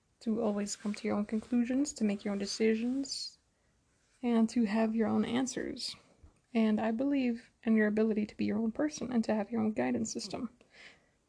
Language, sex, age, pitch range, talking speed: English, female, 20-39, 210-240 Hz, 190 wpm